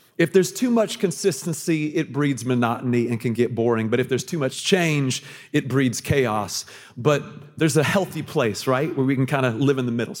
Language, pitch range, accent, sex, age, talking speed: English, 125-170 Hz, American, male, 40-59, 210 wpm